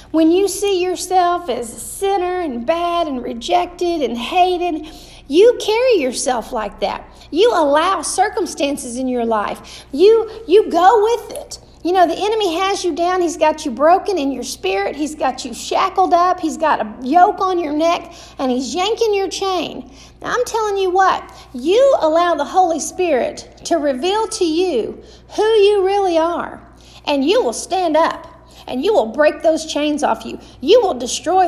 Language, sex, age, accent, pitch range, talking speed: English, female, 50-69, American, 295-385 Hz, 175 wpm